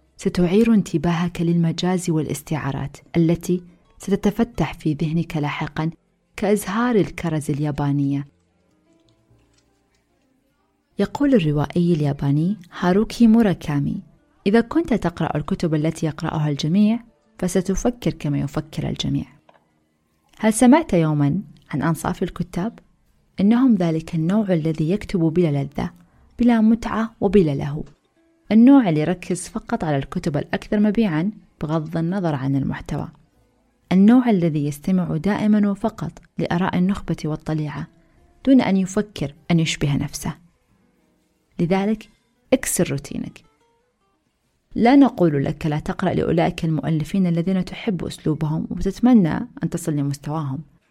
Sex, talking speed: female, 105 wpm